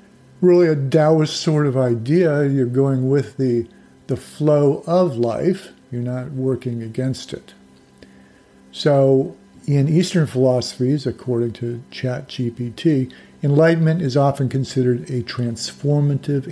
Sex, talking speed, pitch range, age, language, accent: male, 115 wpm, 120-155 Hz, 50-69, English, American